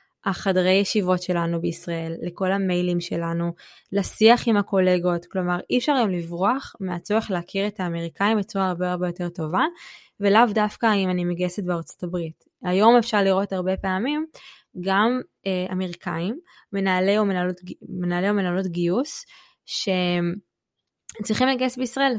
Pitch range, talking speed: 180-215 Hz, 125 wpm